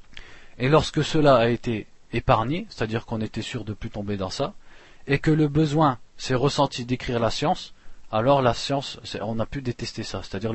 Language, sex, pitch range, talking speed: French, male, 115-140 Hz, 200 wpm